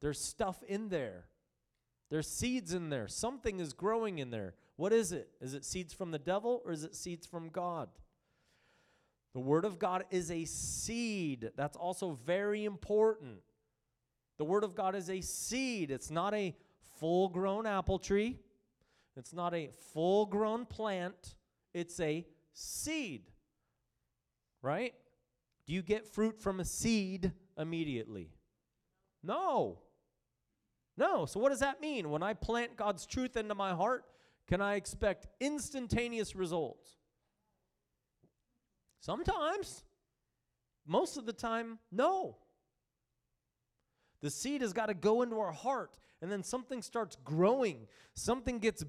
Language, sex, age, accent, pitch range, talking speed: English, male, 30-49, American, 170-230 Hz, 135 wpm